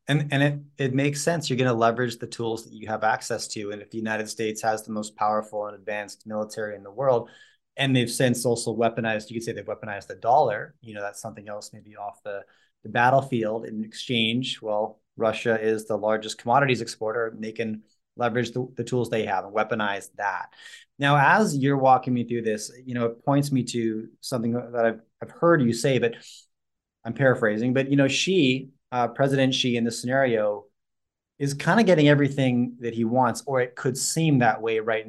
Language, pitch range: English, 110-135 Hz